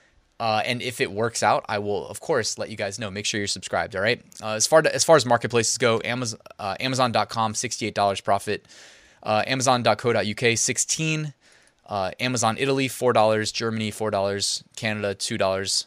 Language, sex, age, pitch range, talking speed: English, male, 20-39, 105-125 Hz, 190 wpm